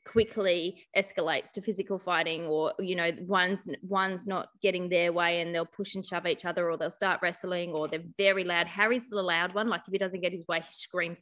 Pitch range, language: 175-220 Hz, English